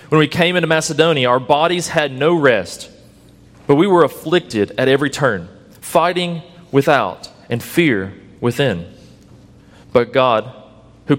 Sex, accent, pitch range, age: male, American, 120-160 Hz, 30-49